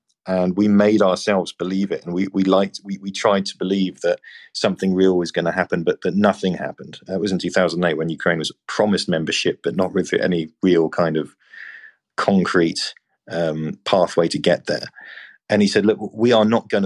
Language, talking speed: English, 200 wpm